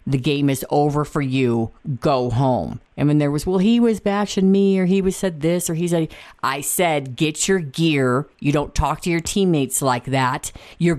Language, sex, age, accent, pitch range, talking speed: English, female, 50-69, American, 125-160 Hz, 215 wpm